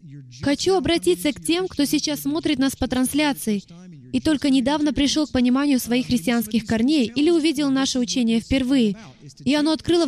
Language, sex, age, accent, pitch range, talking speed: Russian, female, 20-39, native, 230-305 Hz, 160 wpm